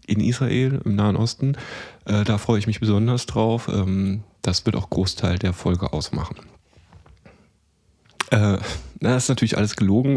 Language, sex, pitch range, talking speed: English, male, 95-120 Hz, 155 wpm